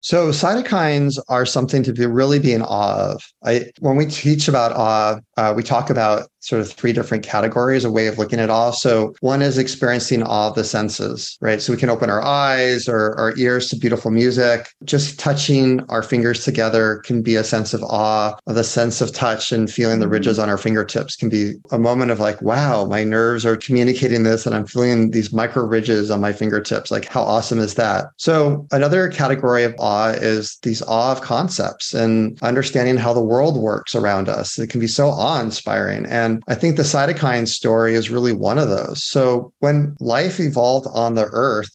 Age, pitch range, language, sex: 30-49, 110-135 Hz, English, male